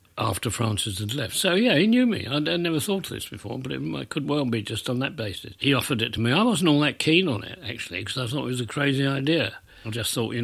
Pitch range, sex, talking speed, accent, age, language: 105-140 Hz, male, 295 wpm, British, 60-79, English